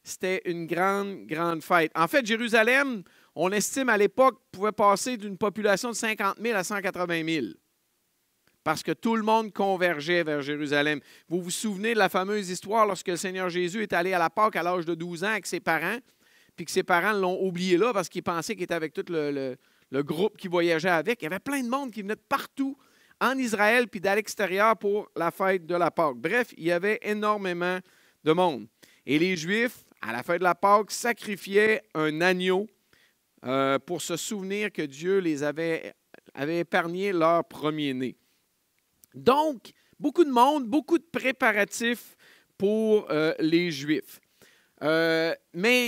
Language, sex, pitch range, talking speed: French, male, 170-215 Hz, 180 wpm